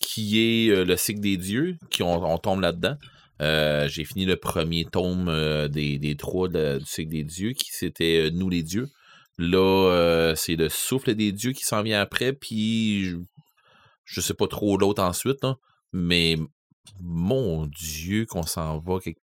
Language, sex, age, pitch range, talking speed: French, male, 30-49, 85-115 Hz, 180 wpm